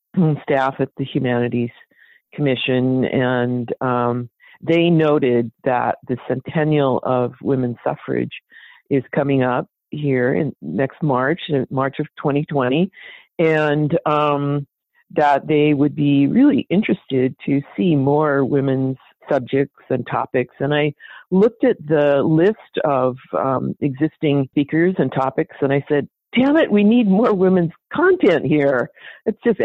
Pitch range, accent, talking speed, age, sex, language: 130-165 Hz, American, 135 wpm, 50-69, female, English